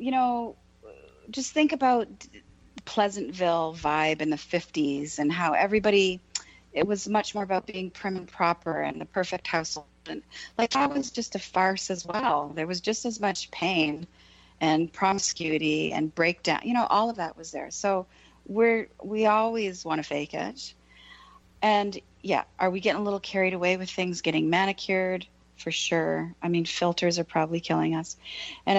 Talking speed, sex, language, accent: 175 wpm, female, English, American